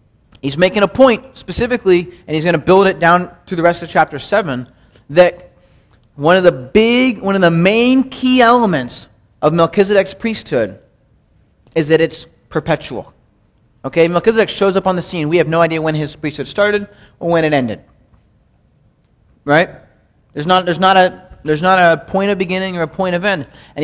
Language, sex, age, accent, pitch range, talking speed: English, male, 30-49, American, 145-195 Hz, 175 wpm